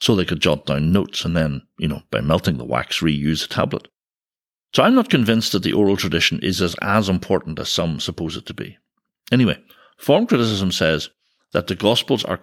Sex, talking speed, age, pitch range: male, 210 wpm, 60-79, 90-130 Hz